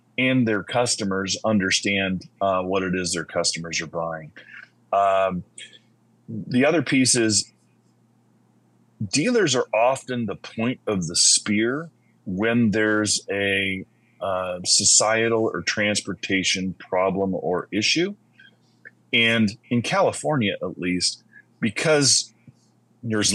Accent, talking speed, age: American, 110 wpm, 30-49